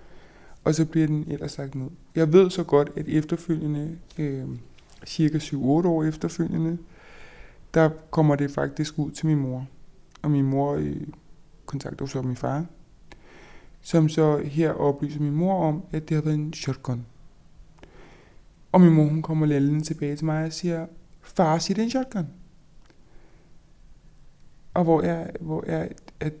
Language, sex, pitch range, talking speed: Danish, male, 145-165 Hz, 160 wpm